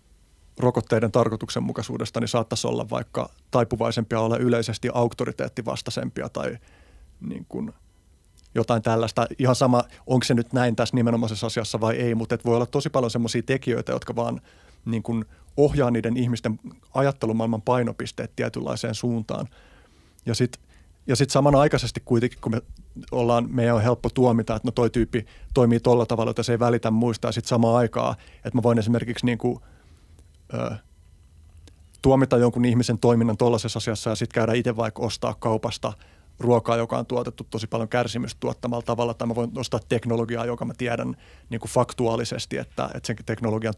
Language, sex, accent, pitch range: Finnish, male, native, 110-120 Hz